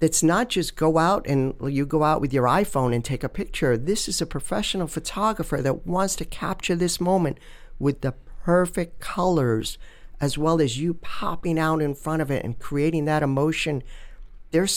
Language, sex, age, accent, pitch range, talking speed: English, male, 50-69, American, 130-170 Hz, 185 wpm